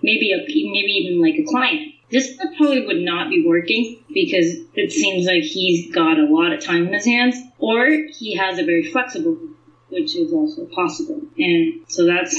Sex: female